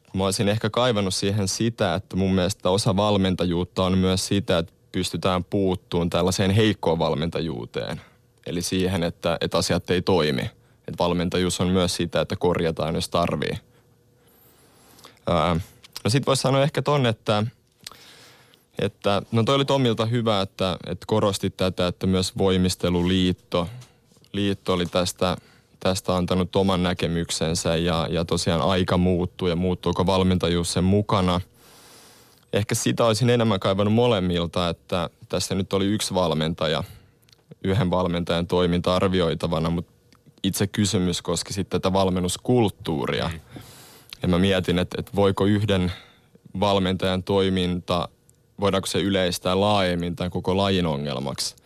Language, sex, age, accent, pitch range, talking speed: Finnish, male, 20-39, native, 90-100 Hz, 130 wpm